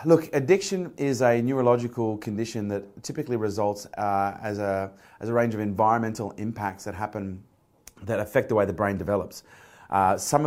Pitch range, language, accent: 105-120 Hz, English, Australian